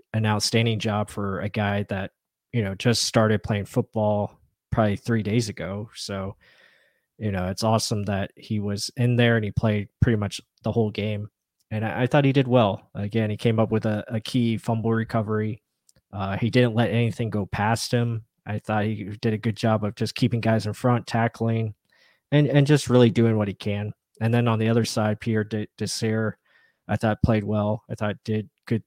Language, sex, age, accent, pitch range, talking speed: English, male, 20-39, American, 105-115 Hz, 205 wpm